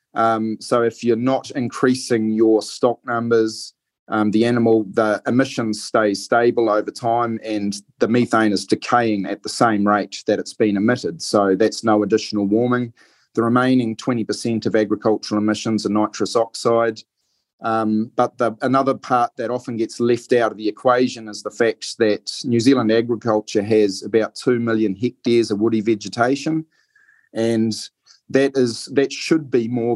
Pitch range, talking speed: 105-125 Hz, 160 wpm